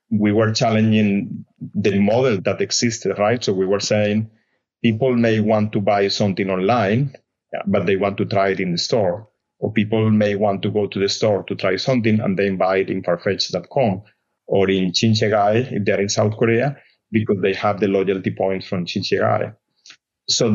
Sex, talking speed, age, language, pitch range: male, 185 wpm, 30-49, English, 100-115 Hz